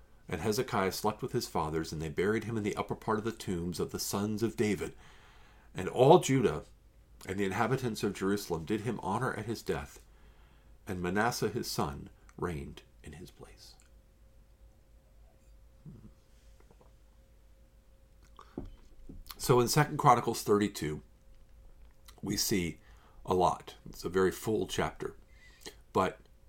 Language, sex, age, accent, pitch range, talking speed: English, male, 50-69, American, 75-110 Hz, 135 wpm